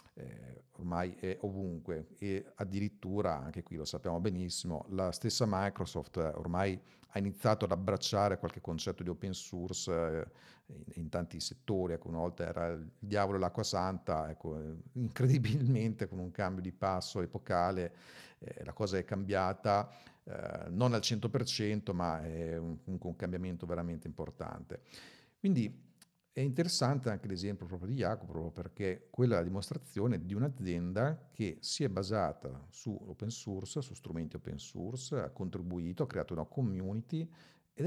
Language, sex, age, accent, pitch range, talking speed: Italian, male, 50-69, native, 85-115 Hz, 145 wpm